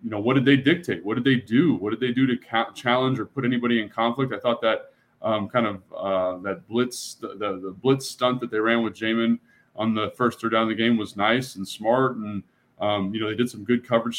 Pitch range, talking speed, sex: 105-120 Hz, 260 wpm, male